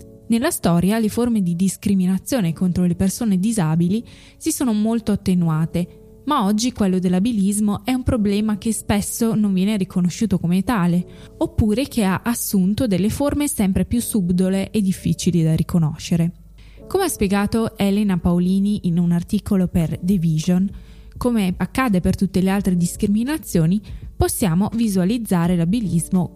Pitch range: 175-215 Hz